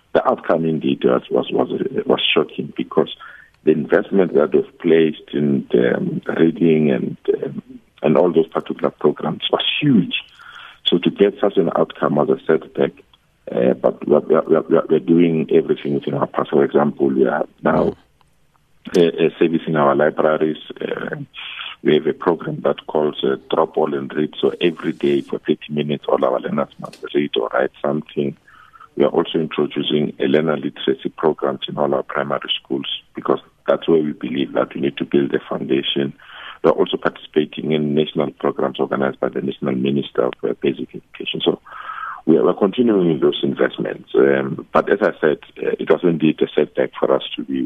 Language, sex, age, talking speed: English, male, 60-79, 185 wpm